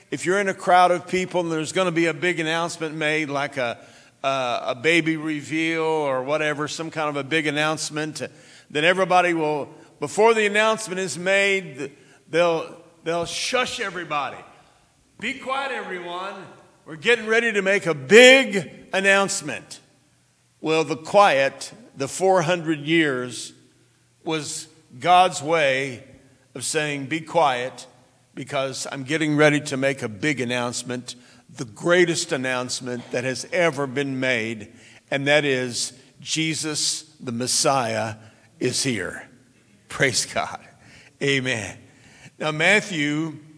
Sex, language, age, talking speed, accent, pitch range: male, English, 50-69, 130 wpm, American, 135-170 Hz